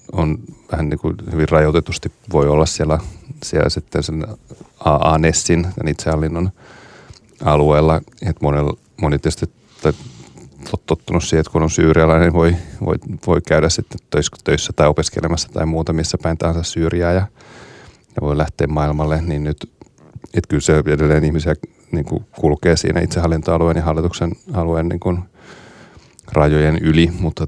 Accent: native